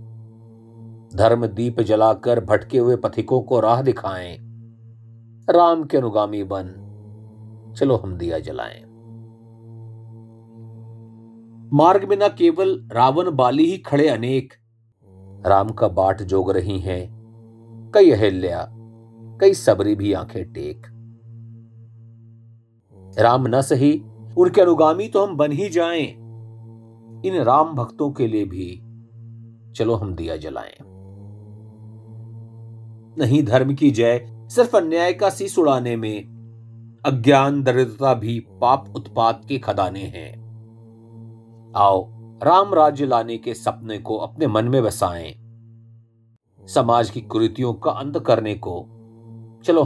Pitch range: 110-120 Hz